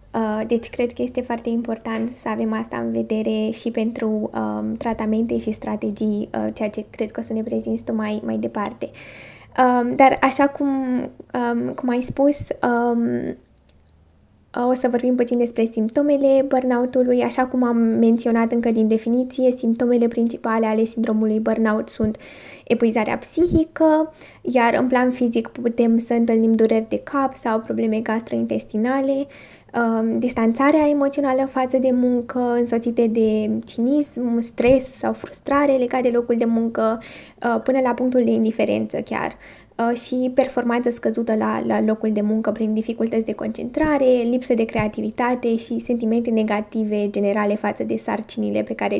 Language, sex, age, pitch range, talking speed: Romanian, female, 20-39, 220-250 Hz, 140 wpm